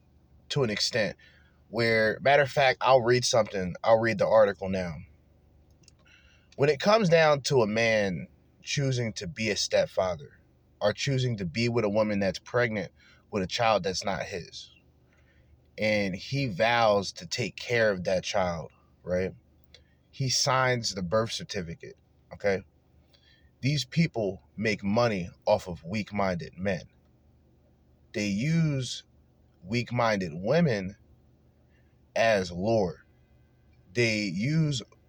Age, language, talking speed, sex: 30-49, English, 130 wpm, male